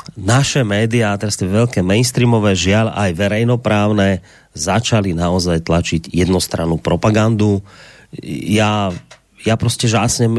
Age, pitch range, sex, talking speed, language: 30-49, 100-120 Hz, male, 105 wpm, Slovak